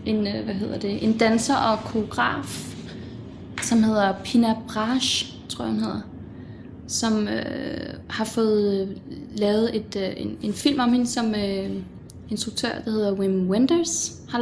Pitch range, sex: 195-225 Hz, female